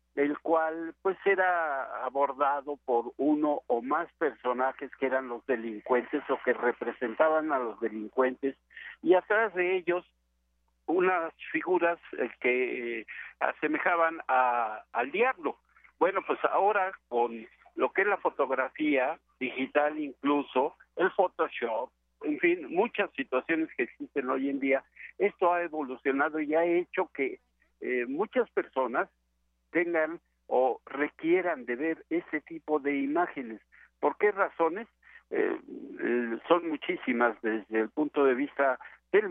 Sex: male